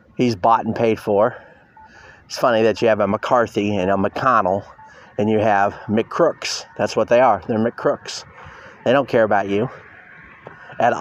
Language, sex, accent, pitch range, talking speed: English, male, American, 110-135 Hz, 170 wpm